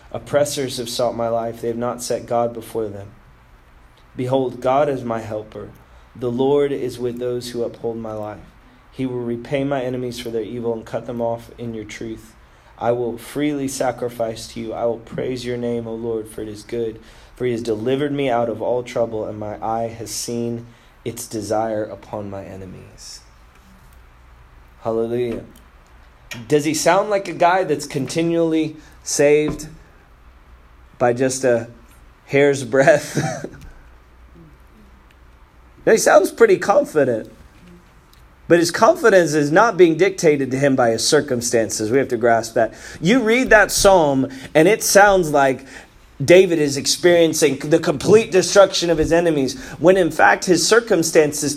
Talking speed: 155 wpm